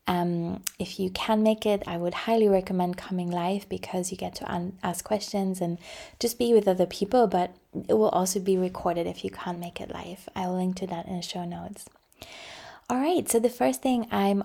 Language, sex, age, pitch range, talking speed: English, female, 20-39, 180-200 Hz, 215 wpm